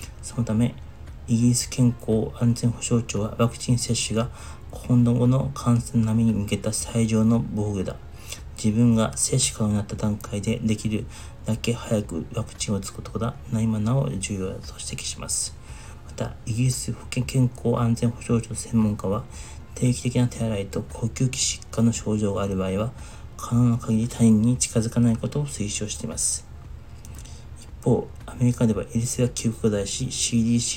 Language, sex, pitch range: Japanese, male, 100-120 Hz